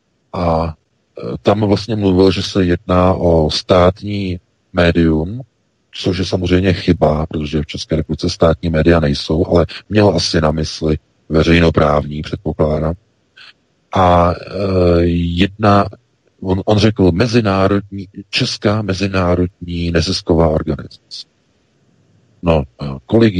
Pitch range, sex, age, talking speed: 80-95 Hz, male, 40-59, 105 wpm